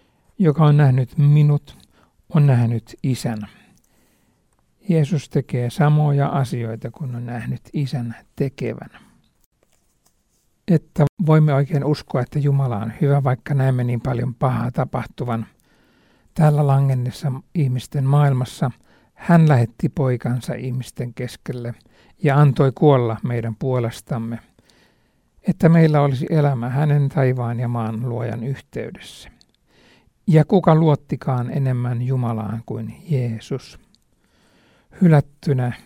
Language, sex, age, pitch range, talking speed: Finnish, male, 60-79, 120-150 Hz, 105 wpm